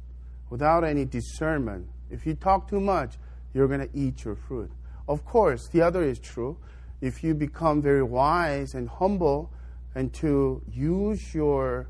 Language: English